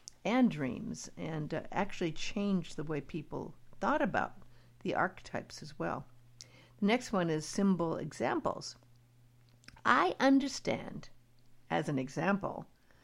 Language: English